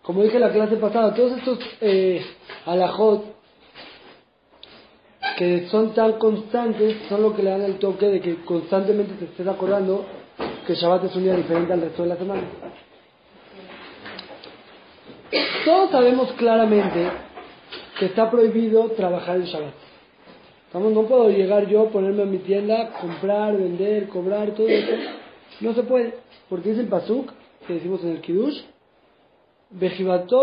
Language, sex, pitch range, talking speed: Spanish, male, 185-230 Hz, 140 wpm